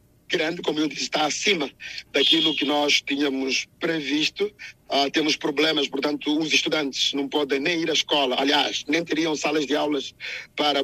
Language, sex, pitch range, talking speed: Portuguese, male, 140-160 Hz, 165 wpm